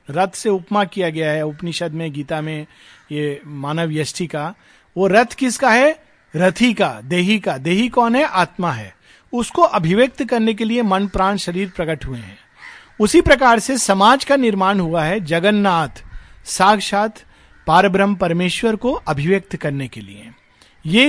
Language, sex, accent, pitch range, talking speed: Hindi, male, native, 155-225 Hz, 160 wpm